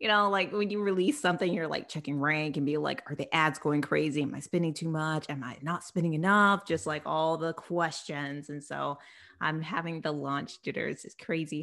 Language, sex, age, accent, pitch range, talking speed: English, female, 20-39, American, 150-200 Hz, 220 wpm